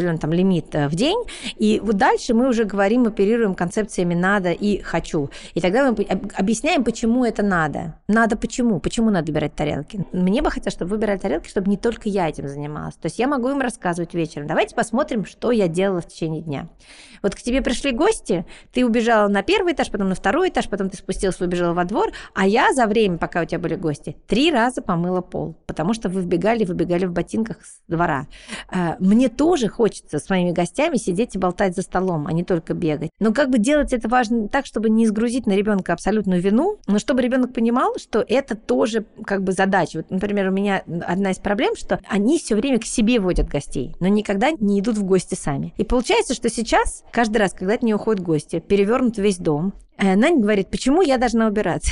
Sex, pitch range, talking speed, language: female, 180-235 Hz, 205 wpm, Russian